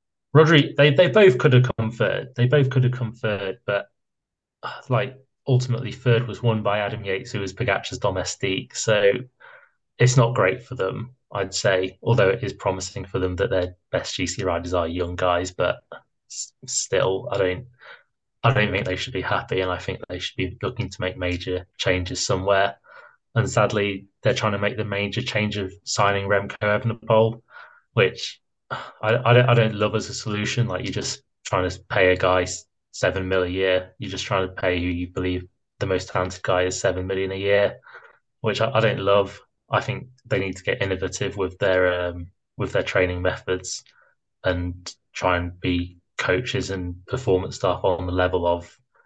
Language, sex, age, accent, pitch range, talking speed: English, male, 20-39, British, 90-120 Hz, 190 wpm